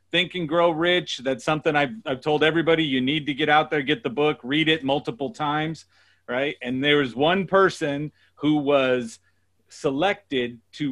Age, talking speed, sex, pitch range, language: 40-59, 180 wpm, male, 125-150 Hz, English